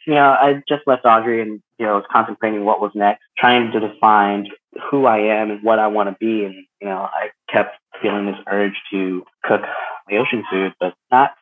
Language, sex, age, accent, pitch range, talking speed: English, male, 20-39, American, 95-110 Hz, 215 wpm